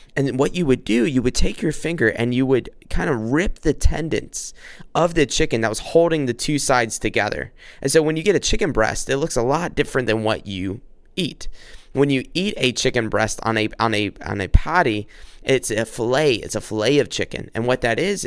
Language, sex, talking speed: English, male, 230 wpm